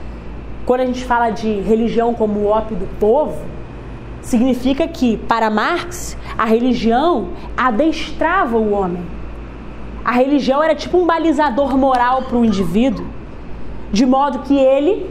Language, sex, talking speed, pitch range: Portuguese, female, 140 wpm, 225-290 Hz